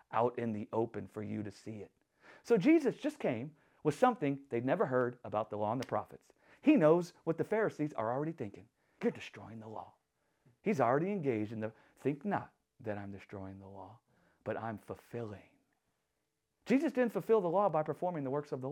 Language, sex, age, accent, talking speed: English, male, 40-59, American, 200 wpm